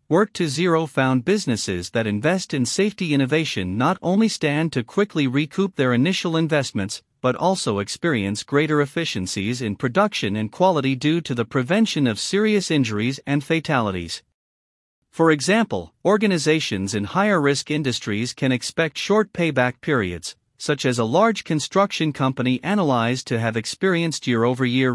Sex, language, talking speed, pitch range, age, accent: male, English, 140 wpm, 120-170 Hz, 50-69, American